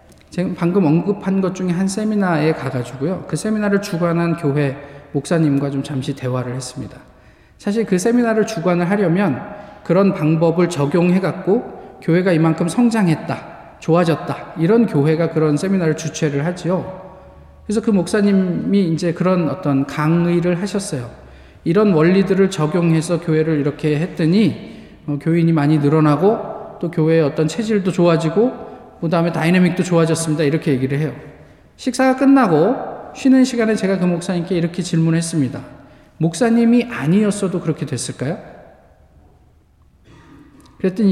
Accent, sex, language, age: native, male, Korean, 20-39